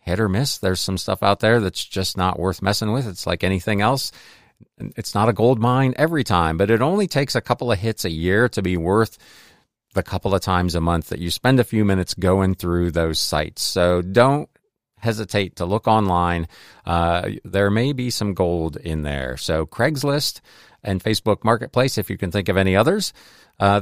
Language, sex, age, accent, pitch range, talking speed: English, male, 40-59, American, 90-115 Hz, 205 wpm